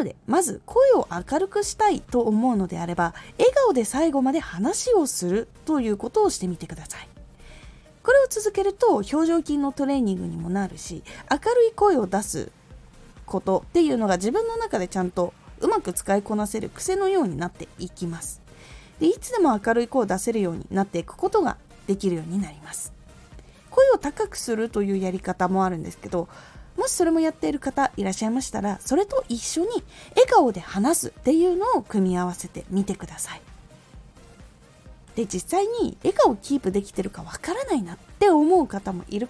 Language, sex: Japanese, female